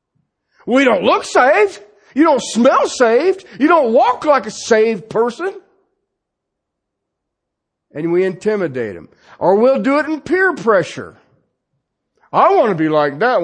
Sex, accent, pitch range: male, American, 150-230 Hz